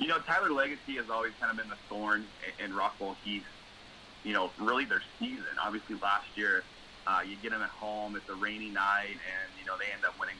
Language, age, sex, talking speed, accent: English, 30-49, male, 230 wpm, American